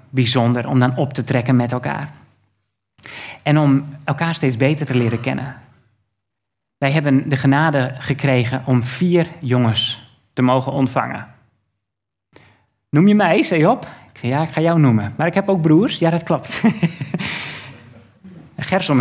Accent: Dutch